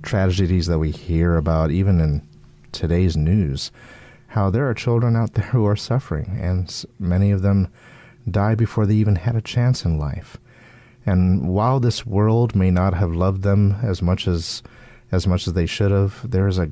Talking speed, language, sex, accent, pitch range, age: 185 wpm, English, male, American, 85-110 Hz, 30-49